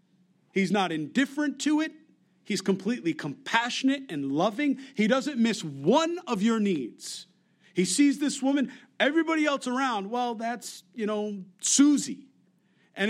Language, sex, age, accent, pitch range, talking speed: English, male, 50-69, American, 175-225 Hz, 135 wpm